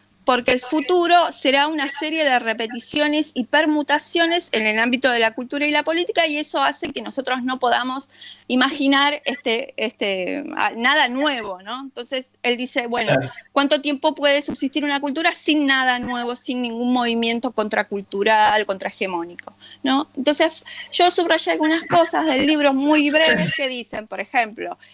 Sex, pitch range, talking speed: female, 240-300 Hz, 155 wpm